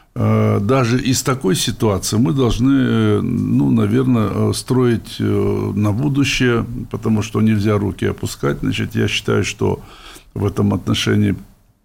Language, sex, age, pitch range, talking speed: Russian, male, 60-79, 105-120 Hz, 110 wpm